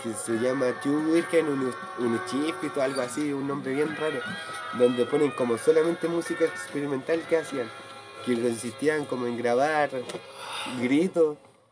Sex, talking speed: male, 145 wpm